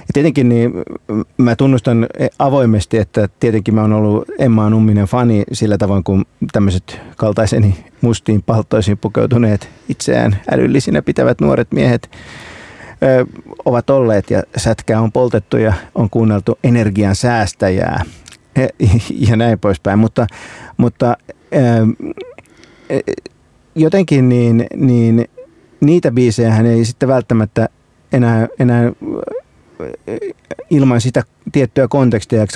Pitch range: 110-135 Hz